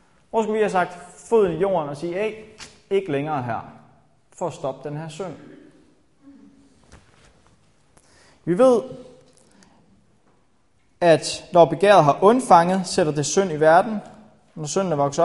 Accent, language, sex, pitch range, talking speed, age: native, Danish, male, 135-195 Hz, 140 wpm, 20-39